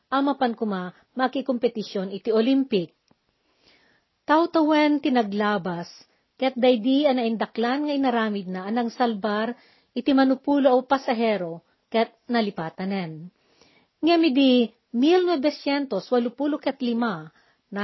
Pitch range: 205-260 Hz